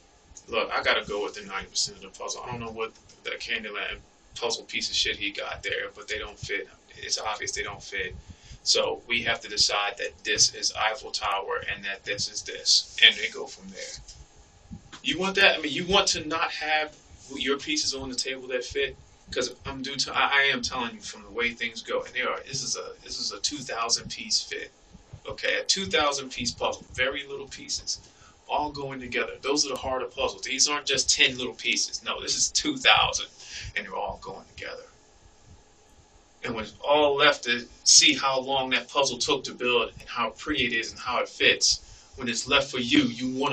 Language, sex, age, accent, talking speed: English, male, 30-49, American, 215 wpm